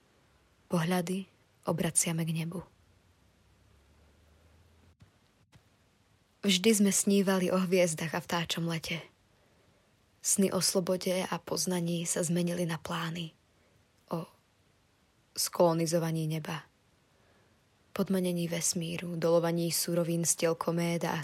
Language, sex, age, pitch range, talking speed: Slovak, female, 20-39, 105-180 Hz, 90 wpm